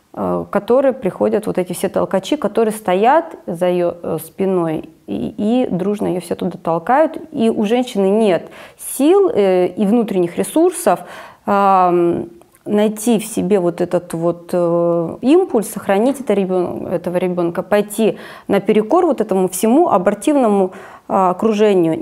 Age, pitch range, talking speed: 30-49, 180-245 Hz, 115 wpm